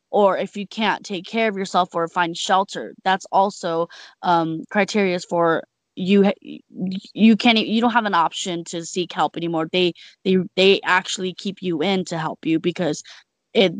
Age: 20-39